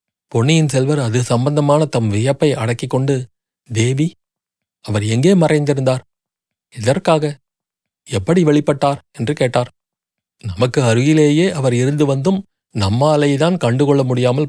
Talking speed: 100 wpm